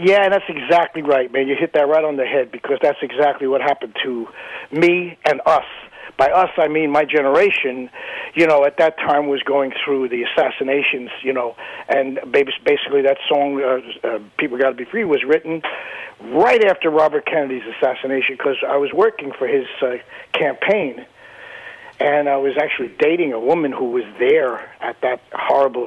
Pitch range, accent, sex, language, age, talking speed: 135-185 Hz, American, male, English, 50-69, 180 wpm